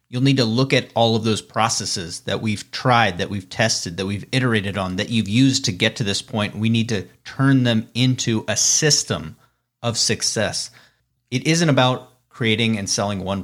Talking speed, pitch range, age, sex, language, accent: 195 wpm, 110-125 Hz, 30-49, male, English, American